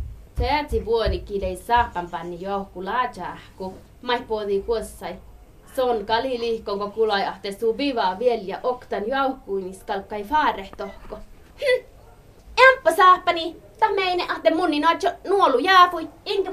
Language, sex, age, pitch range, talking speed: Finnish, female, 20-39, 210-325 Hz, 125 wpm